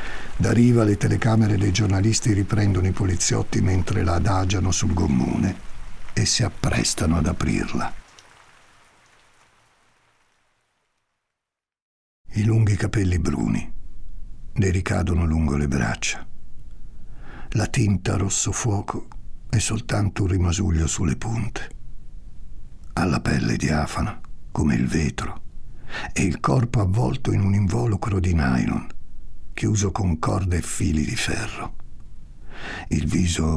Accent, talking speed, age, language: native, 115 wpm, 60-79, Italian